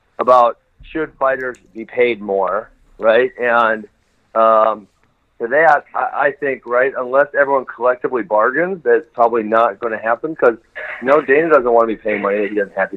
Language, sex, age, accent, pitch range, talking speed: English, male, 40-59, American, 115-140 Hz, 185 wpm